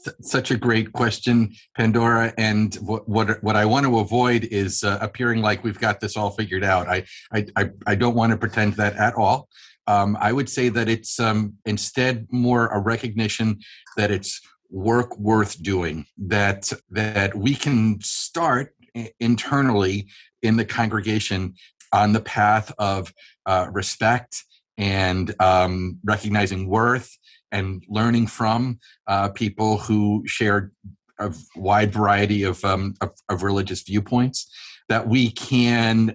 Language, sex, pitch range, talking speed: English, male, 105-125 Hz, 145 wpm